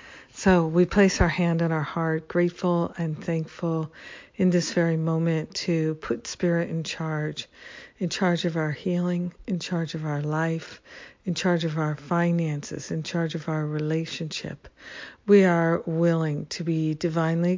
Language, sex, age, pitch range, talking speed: English, female, 60-79, 160-180 Hz, 155 wpm